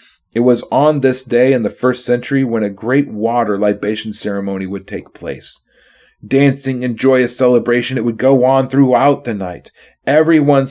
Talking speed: 170 wpm